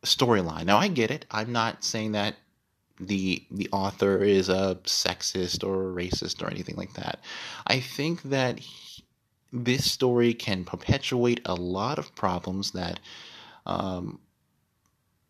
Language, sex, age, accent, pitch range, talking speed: English, male, 30-49, American, 90-115 Hz, 140 wpm